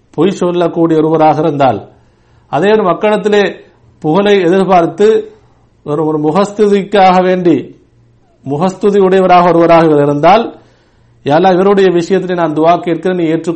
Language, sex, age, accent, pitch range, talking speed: English, male, 50-69, Indian, 155-185 Hz, 95 wpm